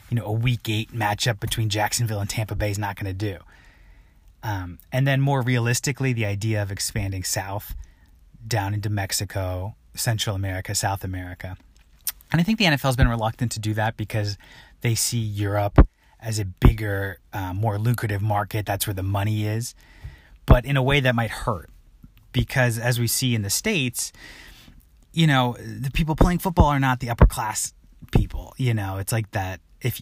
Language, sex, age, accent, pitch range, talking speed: English, male, 20-39, American, 95-120 Hz, 180 wpm